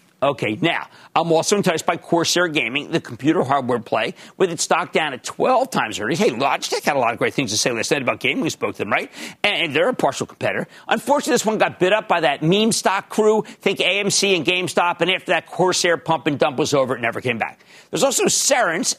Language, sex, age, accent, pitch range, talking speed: English, male, 50-69, American, 155-205 Hz, 235 wpm